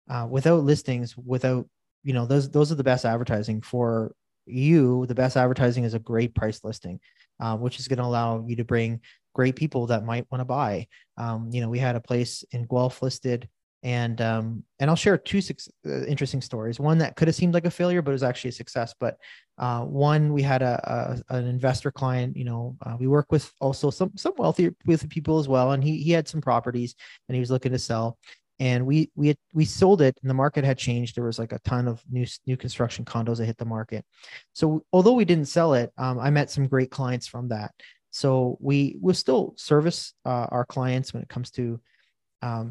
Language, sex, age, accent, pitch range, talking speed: English, male, 30-49, American, 115-135 Hz, 225 wpm